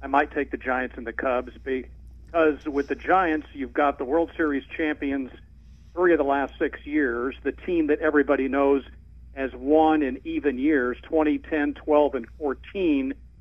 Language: English